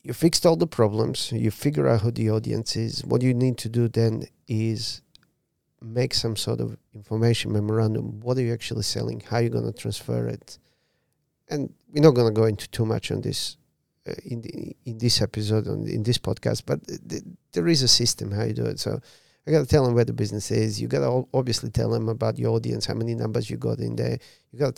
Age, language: 40-59, English